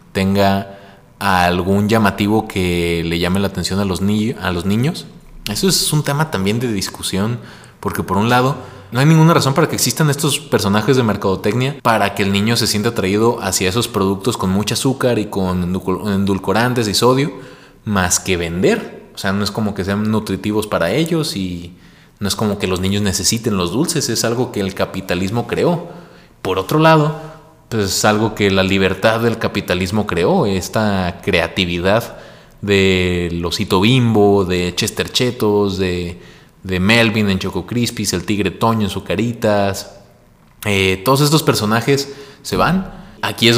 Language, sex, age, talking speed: Spanish, male, 20-39, 170 wpm